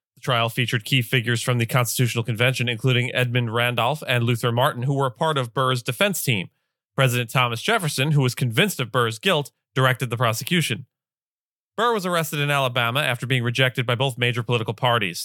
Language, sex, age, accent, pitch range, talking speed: English, male, 30-49, American, 125-150 Hz, 185 wpm